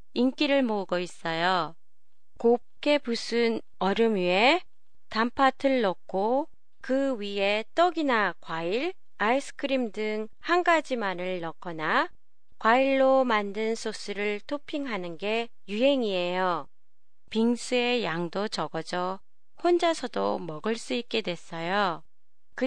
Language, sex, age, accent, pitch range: Japanese, female, 30-49, Korean, 190-270 Hz